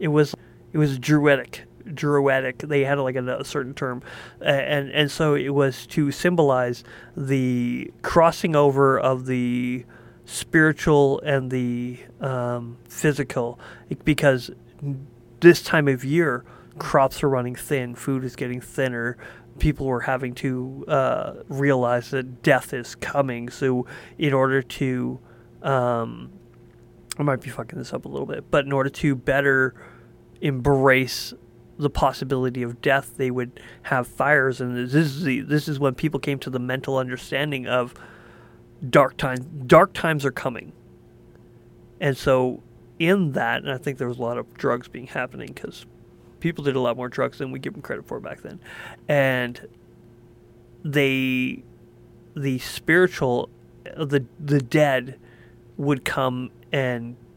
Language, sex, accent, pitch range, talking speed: English, male, American, 125-145 Hz, 150 wpm